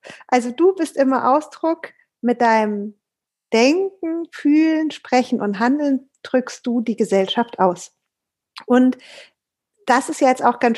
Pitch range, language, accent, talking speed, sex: 230-290 Hz, German, German, 135 wpm, female